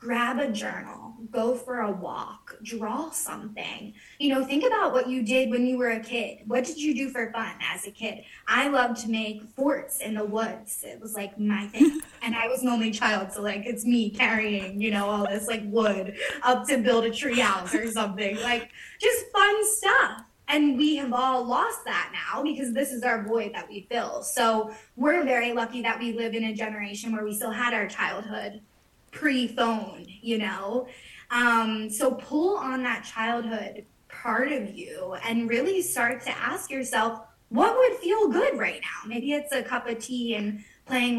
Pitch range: 215-260 Hz